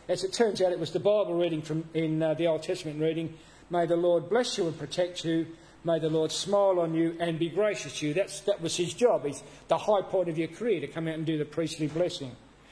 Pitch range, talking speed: 150-180 Hz, 260 wpm